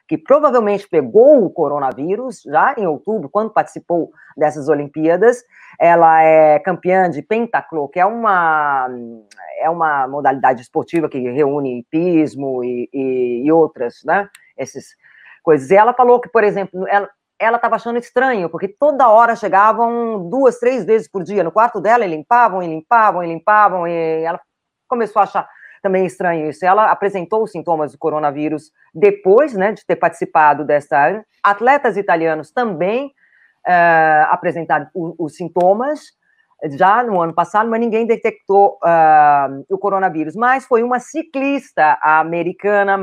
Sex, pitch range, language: female, 160-230 Hz, Portuguese